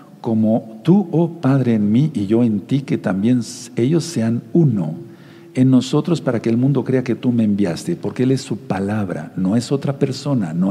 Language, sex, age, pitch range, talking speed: Spanish, male, 60-79, 120-150 Hz, 200 wpm